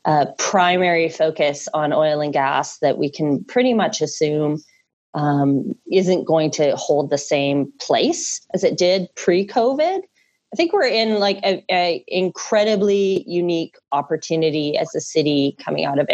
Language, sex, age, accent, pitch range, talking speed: English, female, 30-49, American, 160-225 Hz, 155 wpm